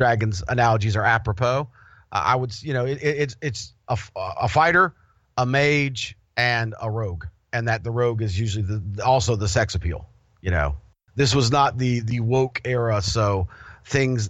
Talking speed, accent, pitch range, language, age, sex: 180 wpm, American, 105-130 Hz, English, 40-59, male